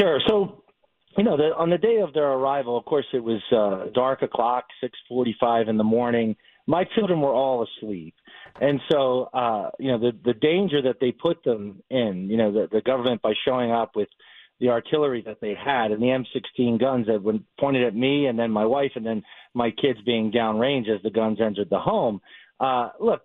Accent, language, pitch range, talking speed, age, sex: American, English, 110-145 Hz, 210 wpm, 40-59, male